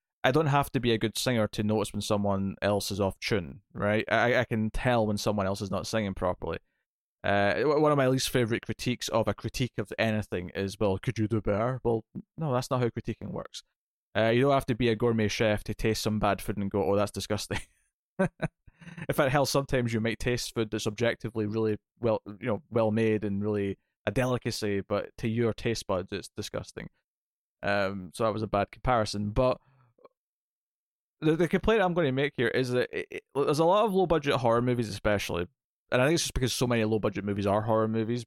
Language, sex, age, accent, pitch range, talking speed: English, male, 20-39, British, 100-125 Hz, 220 wpm